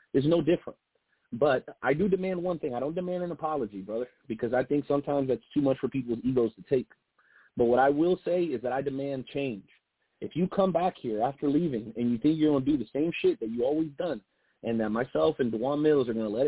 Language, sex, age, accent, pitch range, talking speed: English, male, 30-49, American, 125-160 Hz, 250 wpm